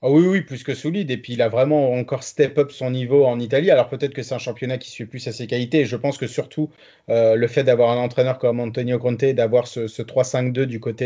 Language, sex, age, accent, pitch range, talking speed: French, male, 30-49, French, 125-155 Hz, 250 wpm